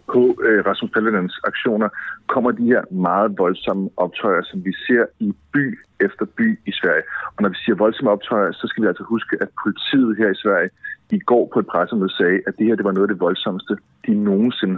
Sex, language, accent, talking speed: male, Danish, native, 210 wpm